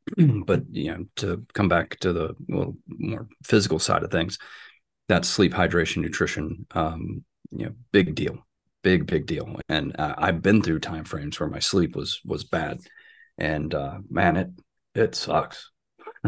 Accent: American